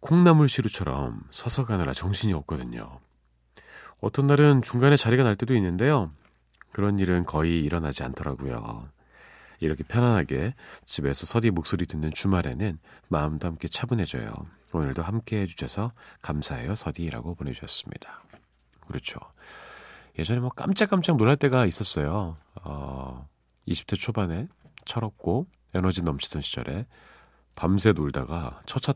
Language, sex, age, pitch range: Korean, male, 40-59, 70-110 Hz